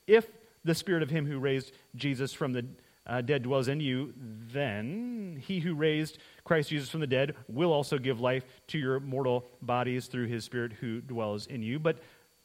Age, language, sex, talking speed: 30-49, English, male, 190 wpm